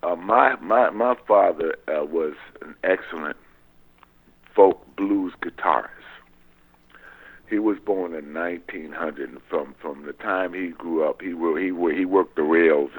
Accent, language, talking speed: American, English, 145 wpm